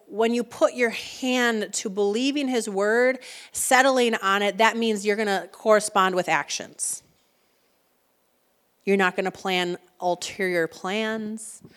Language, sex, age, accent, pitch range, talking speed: English, female, 30-49, American, 180-225 Hz, 140 wpm